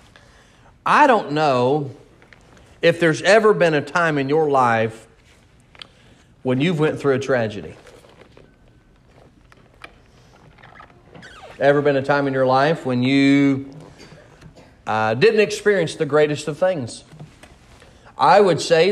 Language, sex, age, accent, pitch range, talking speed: English, male, 40-59, American, 120-160 Hz, 115 wpm